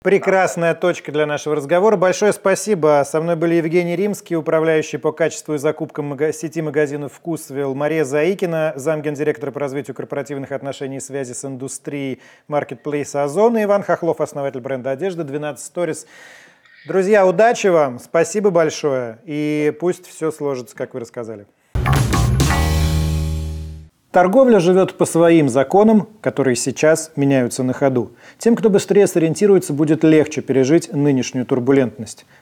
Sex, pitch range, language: male, 130-165 Hz, Russian